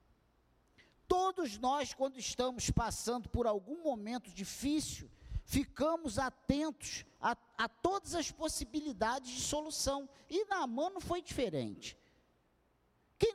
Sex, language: male, Portuguese